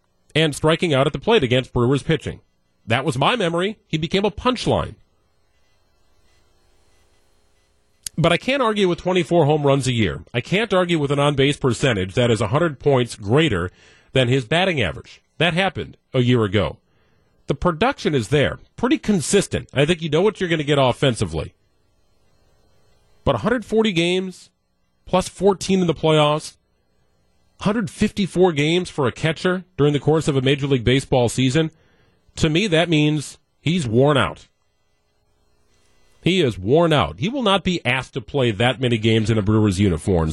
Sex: male